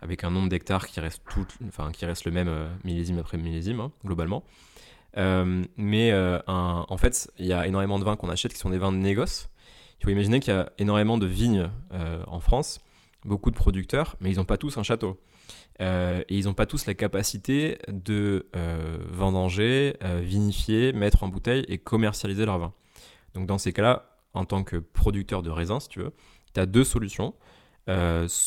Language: French